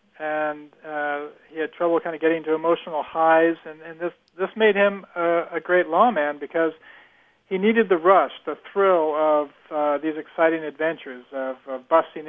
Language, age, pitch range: English, 50-69, 150-185 Hz